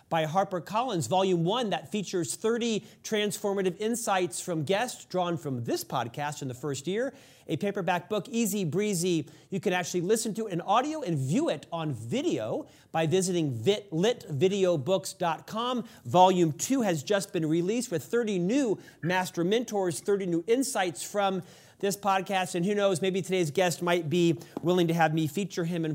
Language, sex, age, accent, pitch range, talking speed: English, male, 40-59, American, 165-205 Hz, 170 wpm